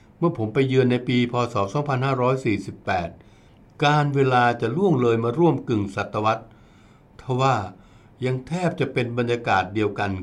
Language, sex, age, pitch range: Thai, male, 60-79, 105-135 Hz